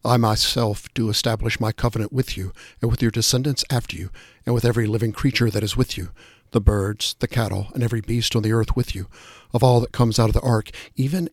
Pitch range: 110-125 Hz